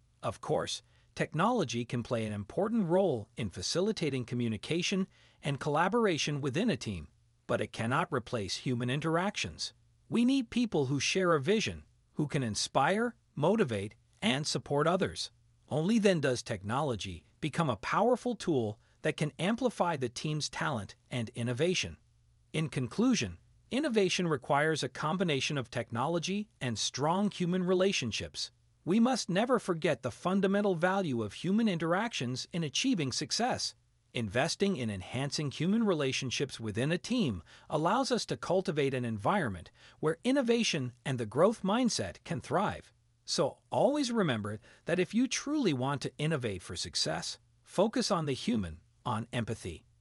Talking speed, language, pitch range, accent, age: 140 wpm, Italian, 115-185 Hz, American, 40-59